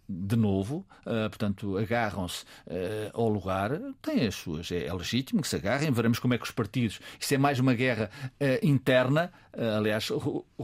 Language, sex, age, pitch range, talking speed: Portuguese, male, 50-69, 105-130 Hz, 180 wpm